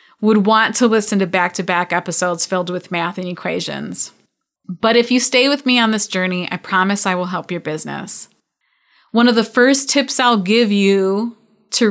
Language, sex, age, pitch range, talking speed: English, female, 30-49, 185-220 Hz, 190 wpm